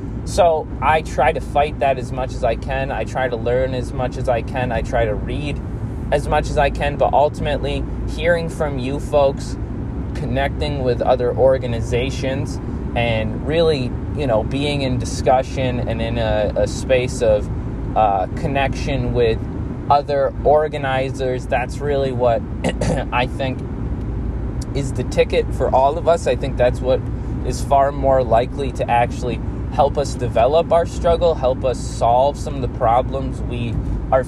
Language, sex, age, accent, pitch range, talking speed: English, male, 20-39, American, 120-140 Hz, 165 wpm